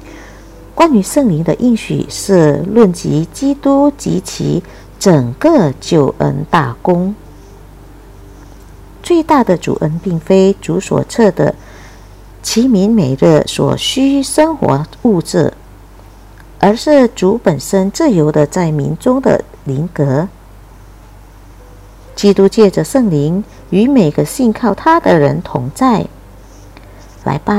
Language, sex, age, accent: Indonesian, female, 50-69, American